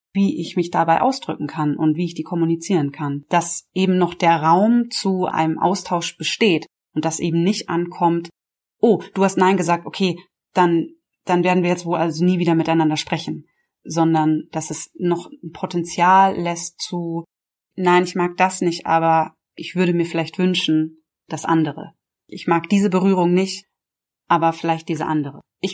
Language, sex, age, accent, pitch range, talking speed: German, female, 30-49, German, 165-185 Hz, 175 wpm